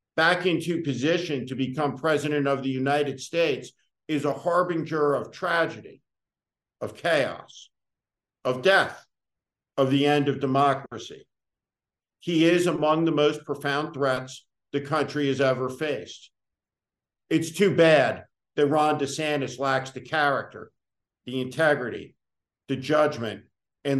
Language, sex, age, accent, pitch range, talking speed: English, male, 50-69, American, 125-155 Hz, 125 wpm